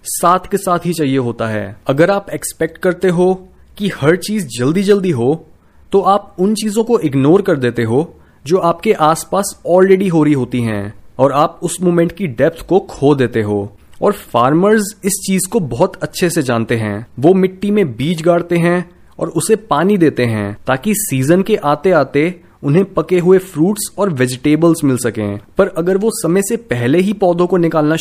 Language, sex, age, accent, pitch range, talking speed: Hindi, male, 20-39, native, 130-190 Hz, 190 wpm